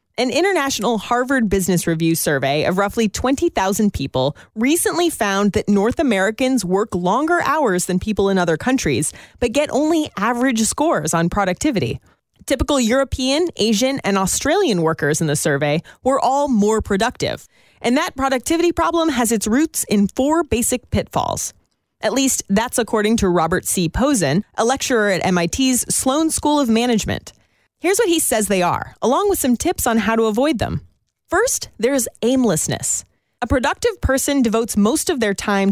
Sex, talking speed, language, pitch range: female, 160 wpm, English, 195-285 Hz